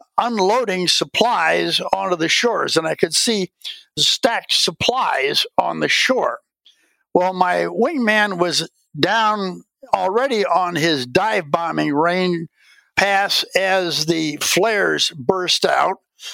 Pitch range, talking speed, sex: 175-230 Hz, 115 wpm, male